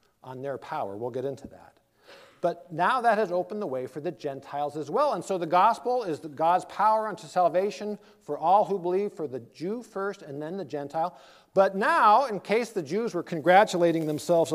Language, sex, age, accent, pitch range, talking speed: English, male, 50-69, American, 140-200 Hz, 200 wpm